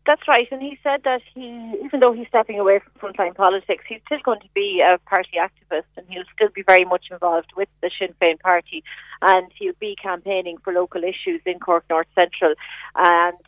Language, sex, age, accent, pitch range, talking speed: English, female, 30-49, Irish, 180-205 Hz, 210 wpm